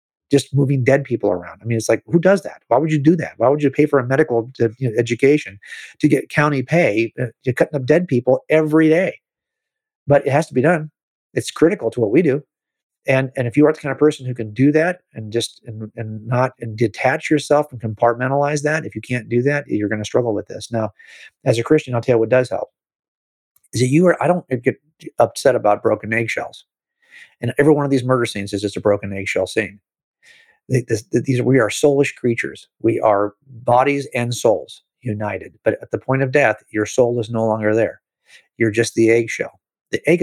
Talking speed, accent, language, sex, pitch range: 220 wpm, American, English, male, 115-150 Hz